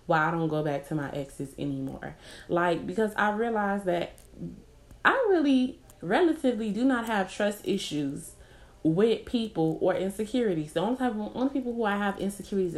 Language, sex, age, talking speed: English, female, 20-39, 160 wpm